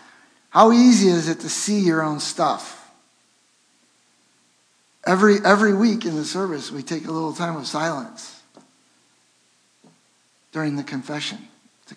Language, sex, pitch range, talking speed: English, male, 150-230 Hz, 130 wpm